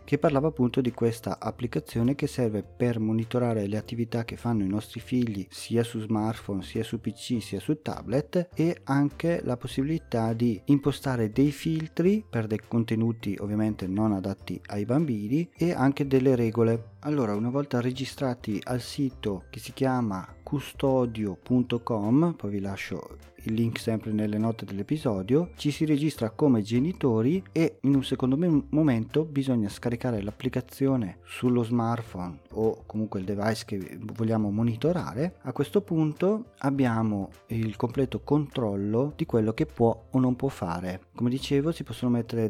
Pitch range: 110-135 Hz